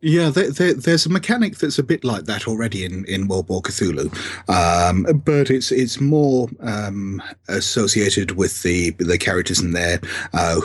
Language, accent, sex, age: English, British, male, 30-49